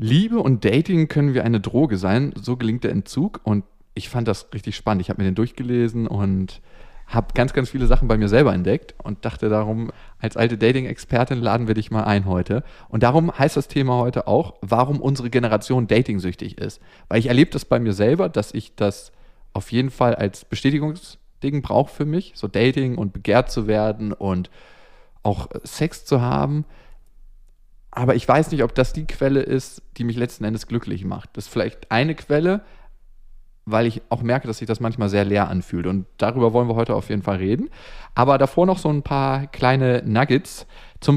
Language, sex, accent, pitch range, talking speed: German, male, German, 105-135 Hz, 195 wpm